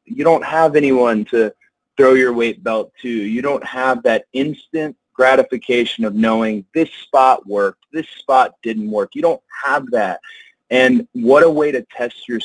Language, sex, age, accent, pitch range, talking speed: English, male, 30-49, American, 120-165 Hz, 175 wpm